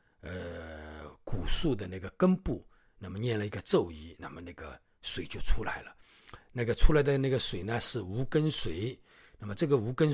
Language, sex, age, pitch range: Chinese, male, 50-69, 90-125 Hz